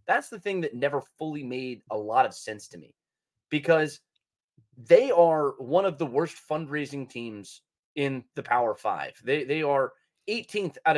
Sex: male